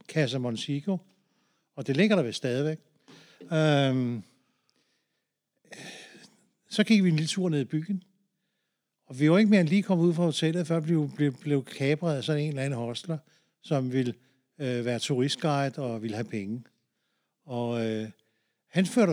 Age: 60-79